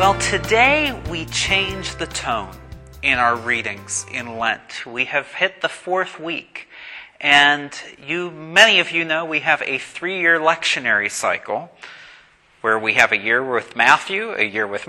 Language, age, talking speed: English, 30-49, 155 wpm